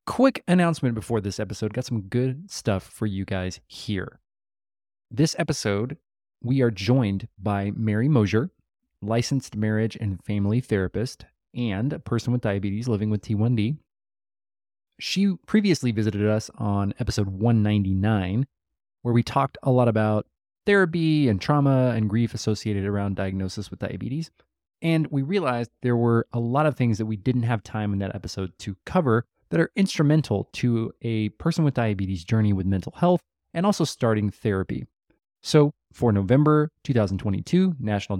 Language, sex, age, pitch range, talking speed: English, male, 30-49, 105-140 Hz, 150 wpm